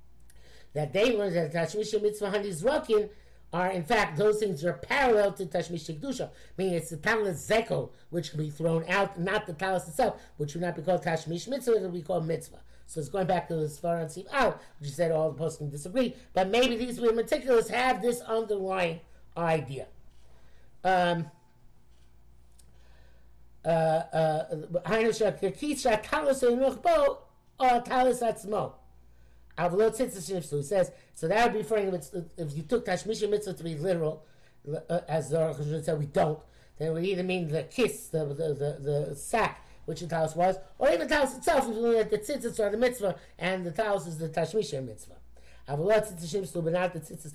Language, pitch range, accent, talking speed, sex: English, 160-220 Hz, American, 170 wpm, male